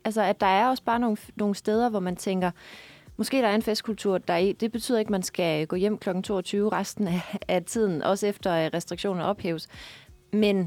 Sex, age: female, 20-39